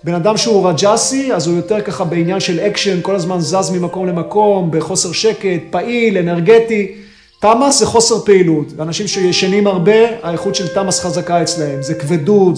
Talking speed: 160 wpm